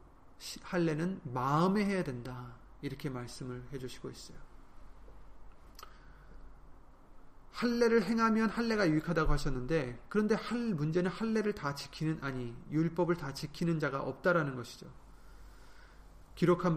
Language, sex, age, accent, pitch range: Korean, male, 30-49, native, 135-180 Hz